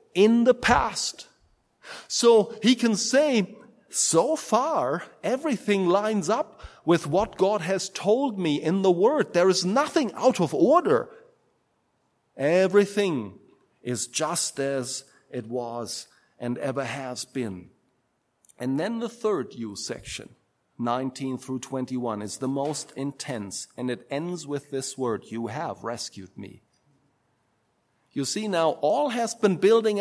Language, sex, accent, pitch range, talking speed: English, male, German, 155-235 Hz, 135 wpm